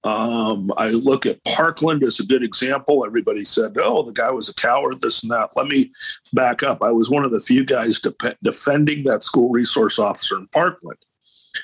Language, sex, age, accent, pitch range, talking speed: English, male, 50-69, American, 140-205 Hz, 195 wpm